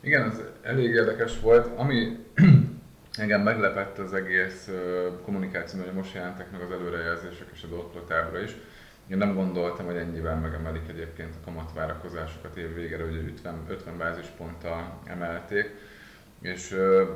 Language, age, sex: Hungarian, 20-39, male